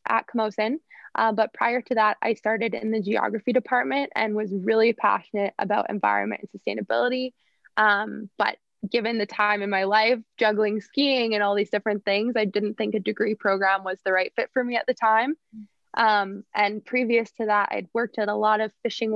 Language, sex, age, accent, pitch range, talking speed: English, female, 20-39, American, 205-240 Hz, 195 wpm